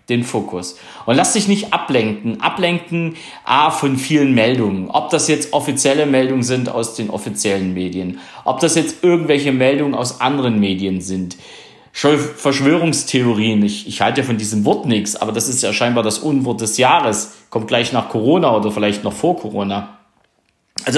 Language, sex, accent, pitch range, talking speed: German, male, German, 115-160 Hz, 165 wpm